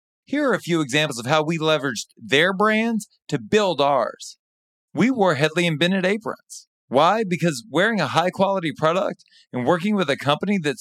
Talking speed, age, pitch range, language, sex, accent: 170 wpm, 30-49, 150-195 Hz, English, male, American